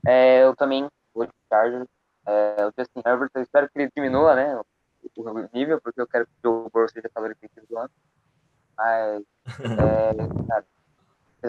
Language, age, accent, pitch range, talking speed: Portuguese, 20-39, Brazilian, 120-140 Hz, 170 wpm